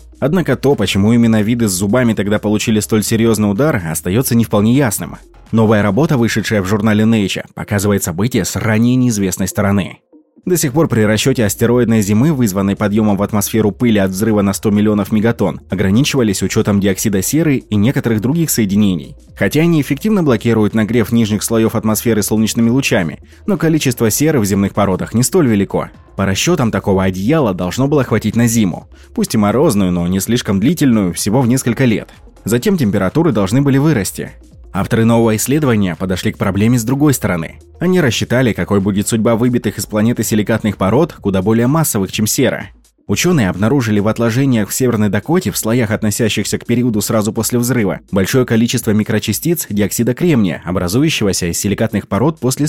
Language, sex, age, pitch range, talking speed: Russian, male, 20-39, 100-125 Hz, 165 wpm